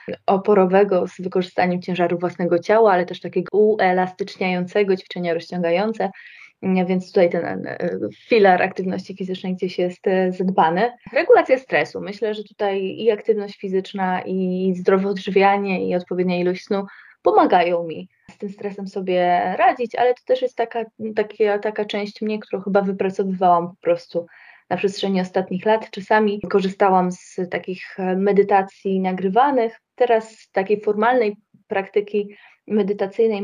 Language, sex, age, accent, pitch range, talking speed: Polish, female, 20-39, native, 185-215 Hz, 130 wpm